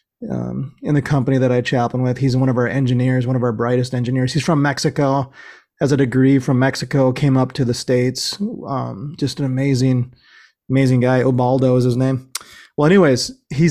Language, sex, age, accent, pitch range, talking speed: English, male, 20-39, American, 125-145 Hz, 195 wpm